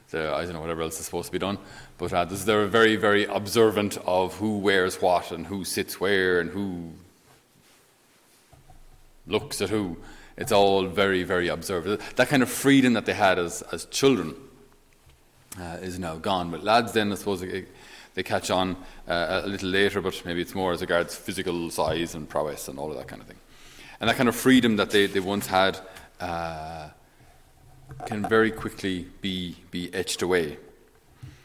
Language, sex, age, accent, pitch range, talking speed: English, male, 30-49, Irish, 85-105 Hz, 180 wpm